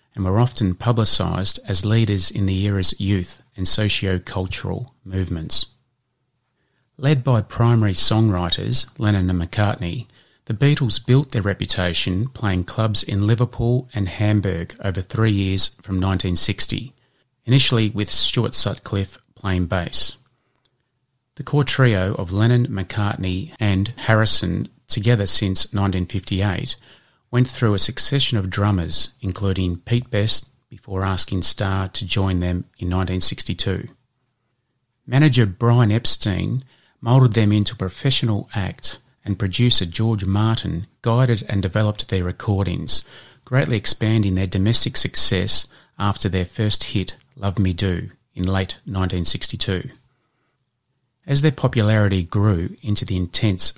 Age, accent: 30-49, Australian